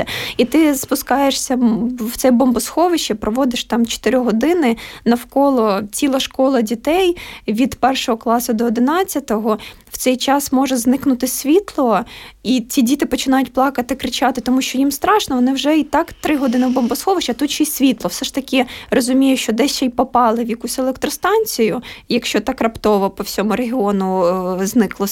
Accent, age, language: native, 20-39, Ukrainian